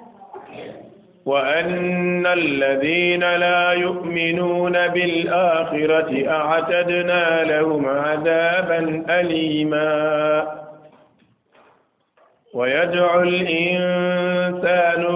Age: 50-69